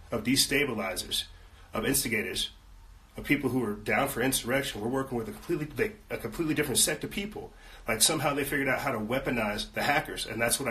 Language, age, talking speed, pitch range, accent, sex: English, 30-49, 200 wpm, 110-130 Hz, American, male